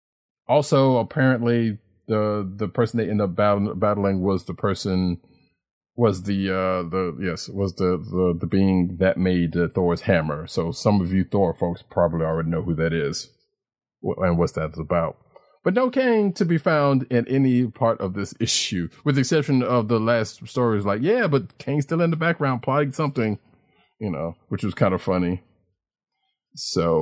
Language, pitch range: English, 95-130 Hz